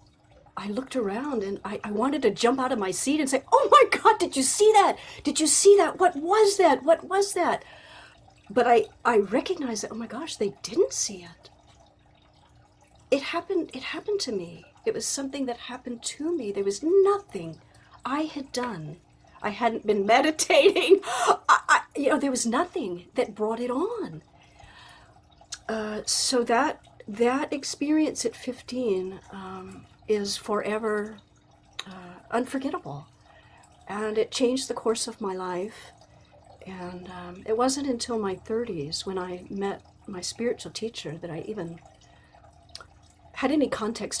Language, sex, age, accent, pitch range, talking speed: English, female, 40-59, American, 190-270 Hz, 160 wpm